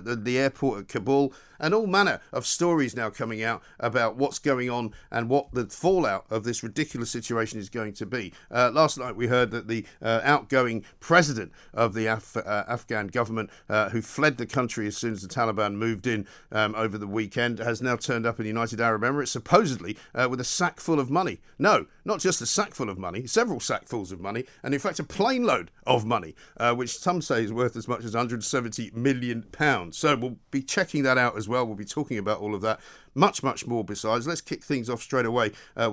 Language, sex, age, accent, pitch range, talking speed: English, male, 50-69, British, 110-135 Hz, 225 wpm